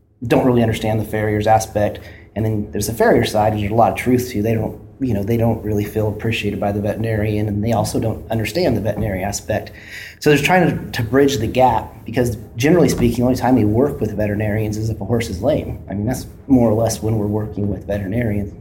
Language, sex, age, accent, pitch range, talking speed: English, male, 30-49, American, 105-115 Hz, 240 wpm